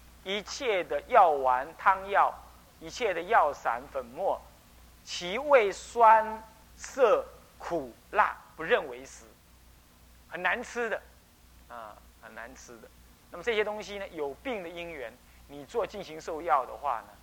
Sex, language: male, Chinese